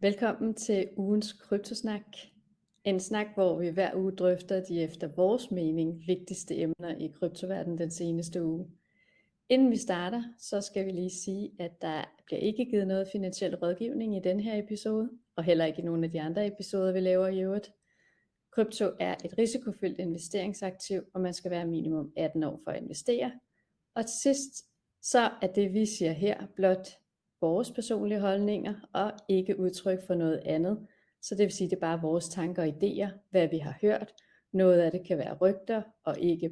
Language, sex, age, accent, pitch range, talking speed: Danish, female, 30-49, native, 175-210 Hz, 185 wpm